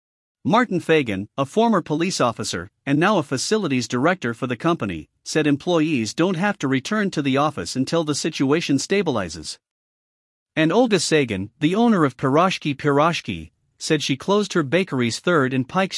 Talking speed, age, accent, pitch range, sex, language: 160 wpm, 50-69, American, 130-180 Hz, male, English